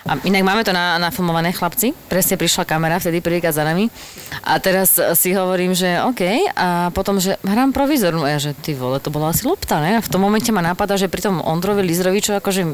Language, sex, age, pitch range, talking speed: Slovak, female, 30-49, 155-200 Hz, 225 wpm